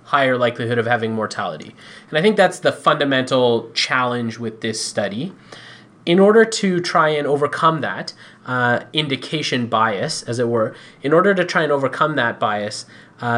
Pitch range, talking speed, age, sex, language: 120-155 Hz, 165 wpm, 30-49, male, English